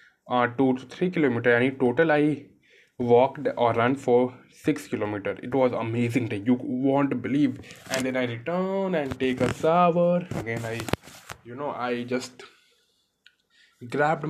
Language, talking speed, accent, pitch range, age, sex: Hindi, 155 wpm, native, 120-145 Hz, 20-39, male